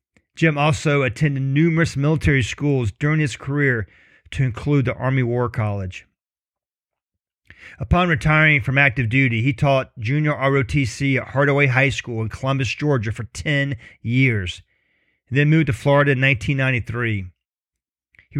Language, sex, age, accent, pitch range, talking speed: English, male, 40-59, American, 120-145 Hz, 135 wpm